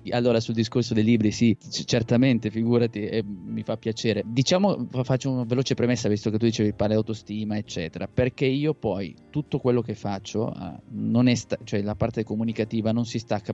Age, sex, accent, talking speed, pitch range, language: 20-39, male, native, 190 wpm, 105-120 Hz, Italian